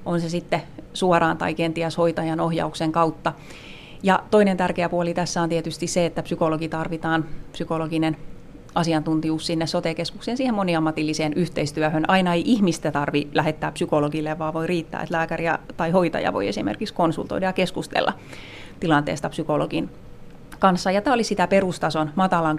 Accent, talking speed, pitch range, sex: native, 145 wpm, 155-185 Hz, female